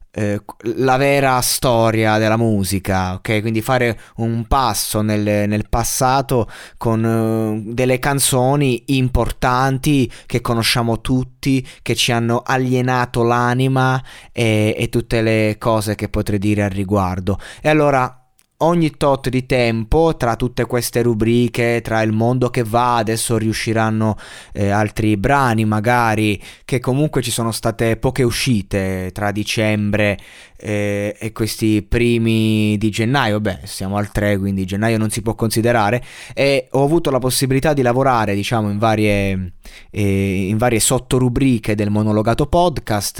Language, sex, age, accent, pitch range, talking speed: Italian, male, 20-39, native, 105-125 Hz, 135 wpm